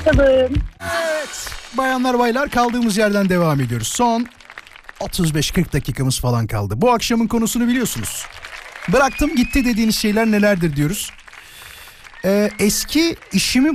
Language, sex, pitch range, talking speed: Turkish, male, 145-215 Hz, 110 wpm